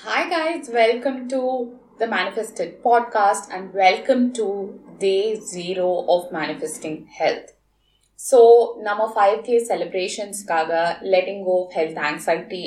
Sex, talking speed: female, 125 wpm